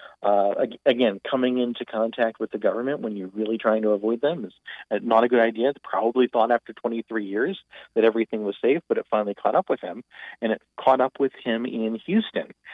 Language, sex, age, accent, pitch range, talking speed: English, male, 40-59, American, 110-130 Hz, 210 wpm